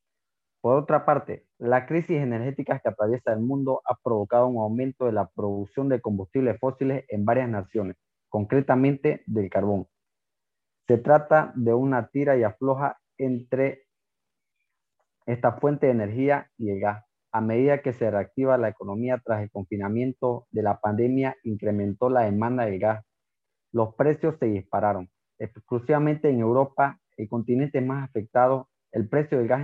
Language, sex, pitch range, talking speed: Spanish, male, 110-135 Hz, 150 wpm